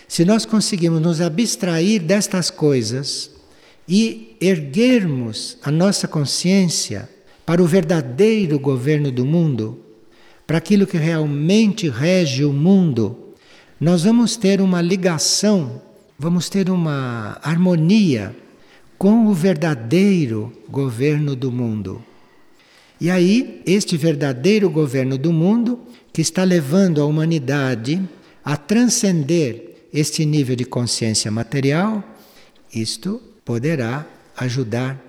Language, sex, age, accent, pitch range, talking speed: Portuguese, male, 60-79, Brazilian, 135-190 Hz, 105 wpm